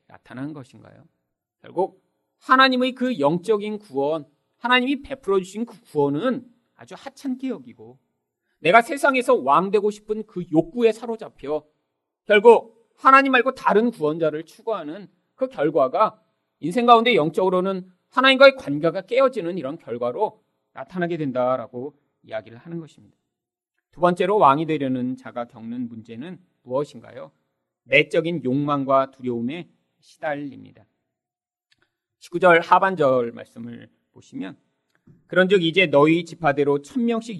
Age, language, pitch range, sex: 40-59, Korean, 125-210 Hz, male